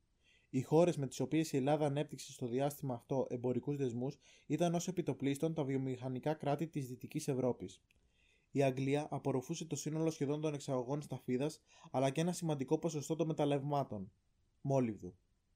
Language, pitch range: Greek, 130-150 Hz